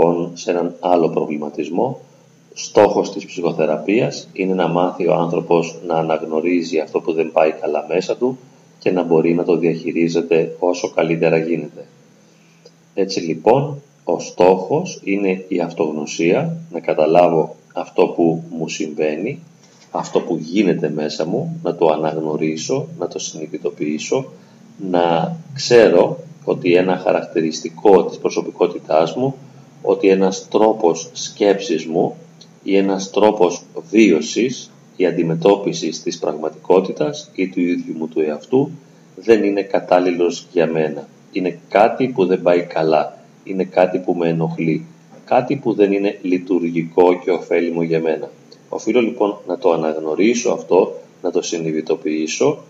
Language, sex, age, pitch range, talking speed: Greek, male, 30-49, 80-95 Hz, 130 wpm